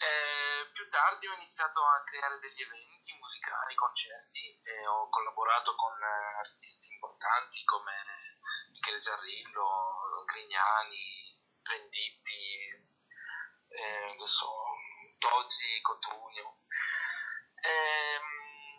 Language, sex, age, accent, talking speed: Italian, male, 30-49, native, 85 wpm